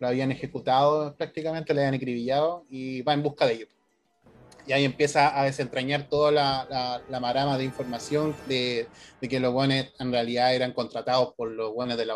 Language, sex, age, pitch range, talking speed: Spanish, male, 30-49, 125-150 Hz, 190 wpm